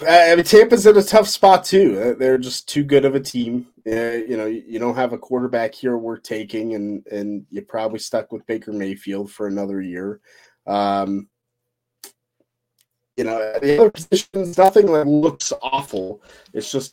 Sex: male